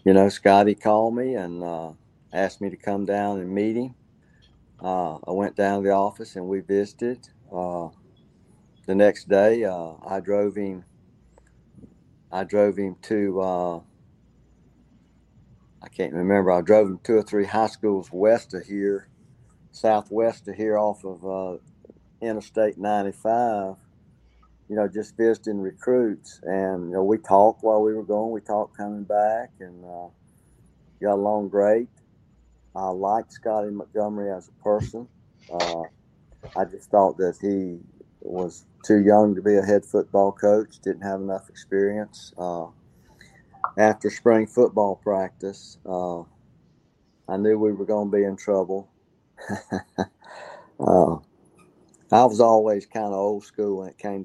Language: English